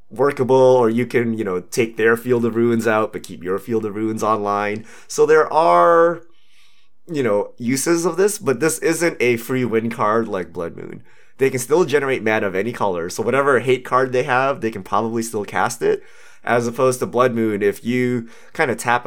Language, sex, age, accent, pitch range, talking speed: English, male, 30-49, American, 110-145 Hz, 210 wpm